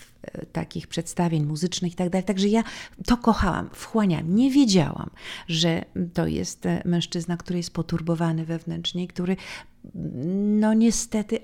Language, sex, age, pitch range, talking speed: Polish, female, 40-59, 175-235 Hz, 115 wpm